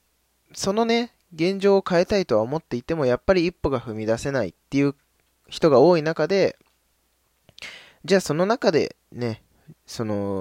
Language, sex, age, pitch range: Japanese, male, 20-39, 100-140 Hz